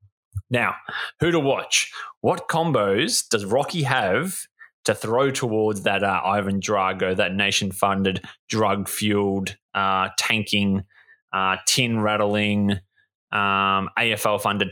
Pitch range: 100-140 Hz